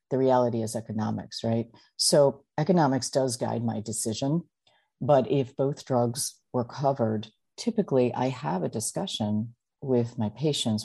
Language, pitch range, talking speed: English, 110-125 Hz, 140 wpm